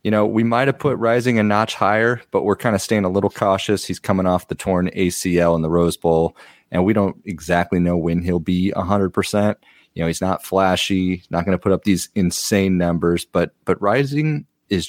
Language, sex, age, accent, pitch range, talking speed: English, male, 30-49, American, 85-100 Hz, 225 wpm